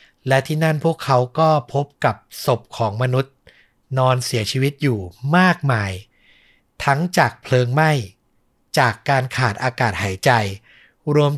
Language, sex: Thai, male